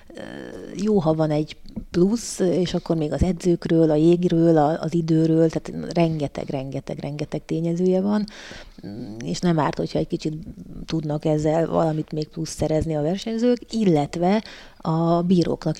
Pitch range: 155-185 Hz